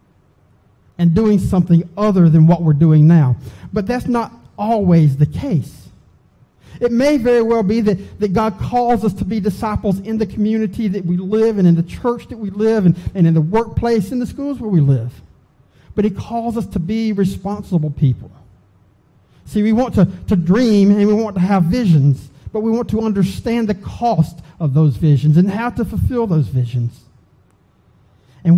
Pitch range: 150-210 Hz